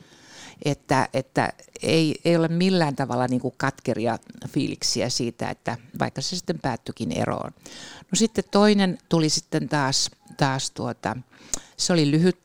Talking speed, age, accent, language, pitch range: 125 wpm, 60-79, native, Finnish, 130-170 Hz